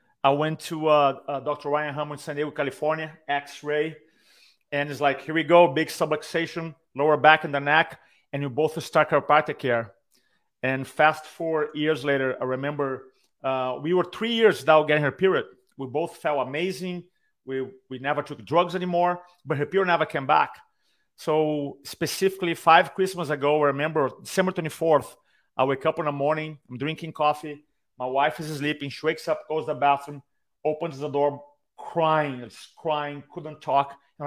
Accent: Brazilian